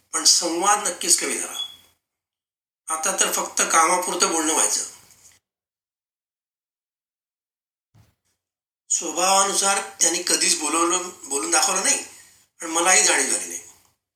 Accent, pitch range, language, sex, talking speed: native, 110-185 Hz, Marathi, male, 60 wpm